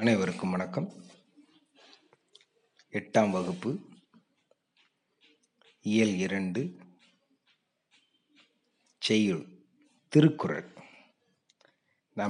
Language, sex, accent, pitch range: Tamil, male, native, 105-120 Hz